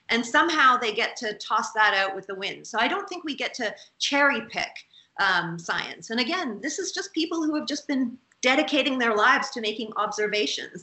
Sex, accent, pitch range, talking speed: female, American, 210-280 Hz, 210 wpm